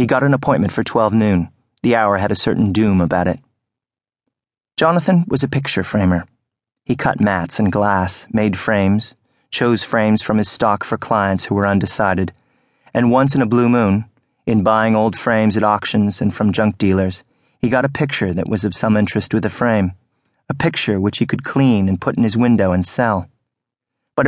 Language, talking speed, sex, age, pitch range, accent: English, 195 wpm, male, 30-49, 100-120 Hz, American